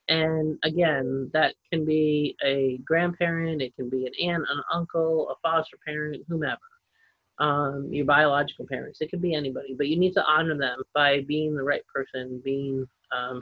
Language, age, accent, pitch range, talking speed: English, 30-49, American, 145-190 Hz, 175 wpm